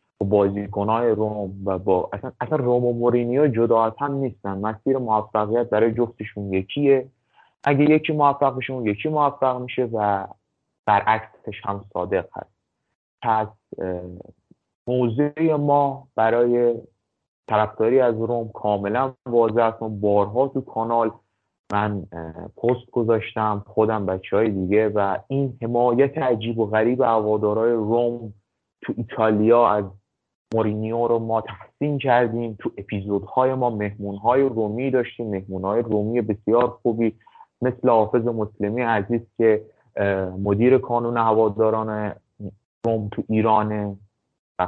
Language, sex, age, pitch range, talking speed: Persian, male, 30-49, 105-125 Hz, 115 wpm